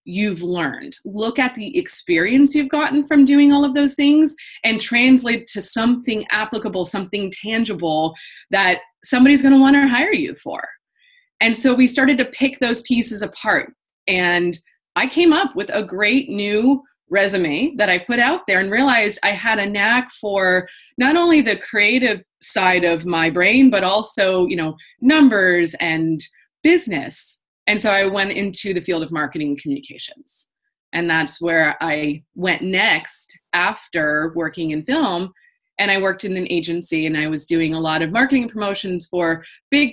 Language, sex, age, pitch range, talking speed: English, female, 20-39, 180-260 Hz, 170 wpm